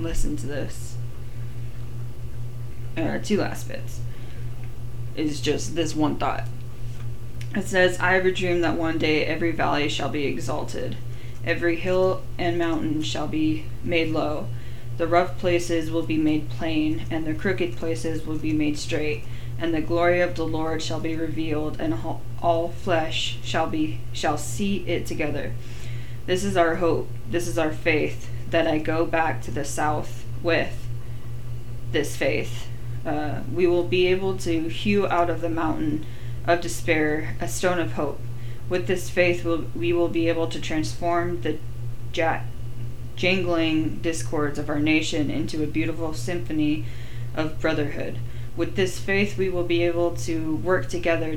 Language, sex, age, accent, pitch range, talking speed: English, female, 20-39, American, 120-165 Hz, 155 wpm